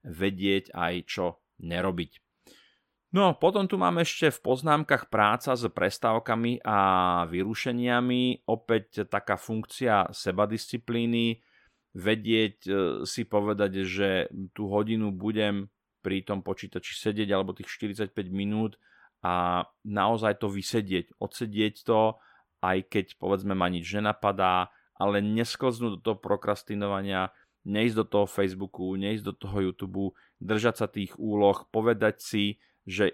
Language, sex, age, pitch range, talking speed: Slovak, male, 30-49, 95-115 Hz, 120 wpm